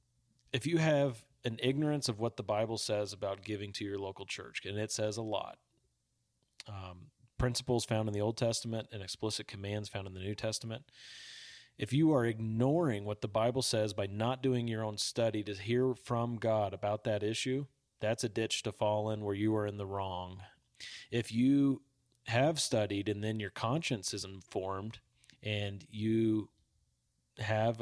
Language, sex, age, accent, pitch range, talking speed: English, male, 30-49, American, 105-125 Hz, 175 wpm